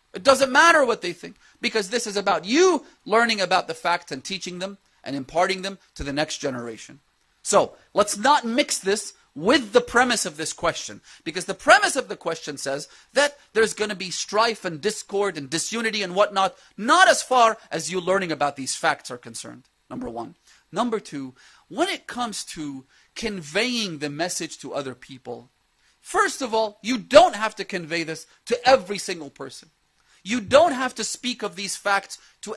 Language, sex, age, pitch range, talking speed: English, male, 30-49, 175-245 Hz, 190 wpm